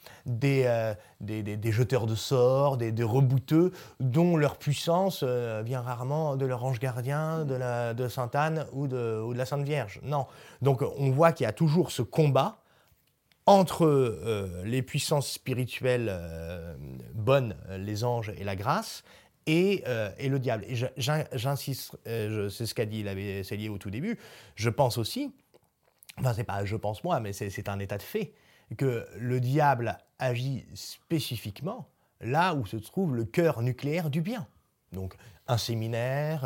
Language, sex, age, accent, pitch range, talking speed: French, male, 30-49, French, 105-140 Hz, 175 wpm